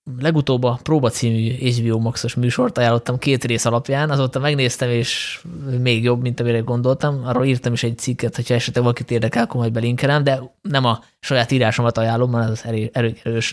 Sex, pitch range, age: male, 115-130 Hz, 20-39